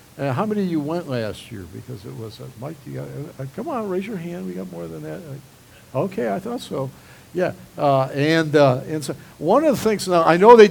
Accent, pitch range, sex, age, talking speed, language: American, 130-170 Hz, male, 60-79, 260 wpm, English